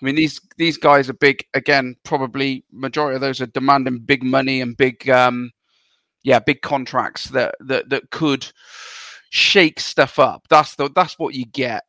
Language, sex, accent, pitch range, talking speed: English, male, British, 130-155 Hz, 175 wpm